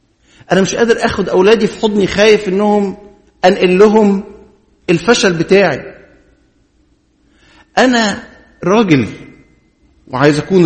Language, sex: English, male